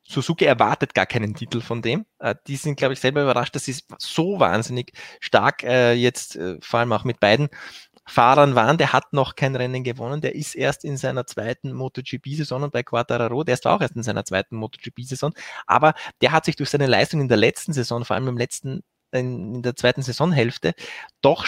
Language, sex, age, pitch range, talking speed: German, male, 20-39, 130-155 Hz, 195 wpm